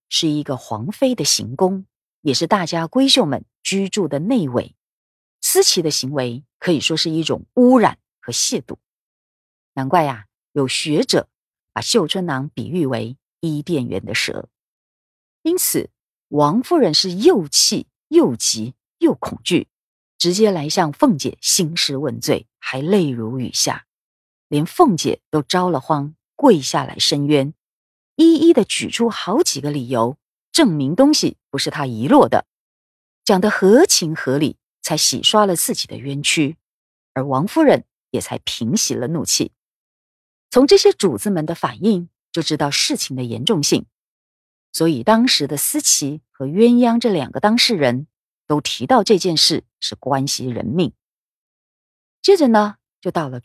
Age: 40-59